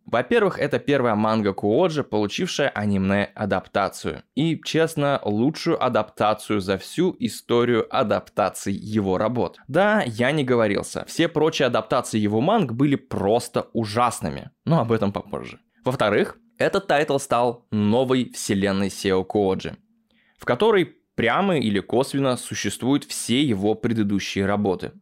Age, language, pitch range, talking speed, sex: 20-39, Russian, 100-140 Hz, 125 wpm, male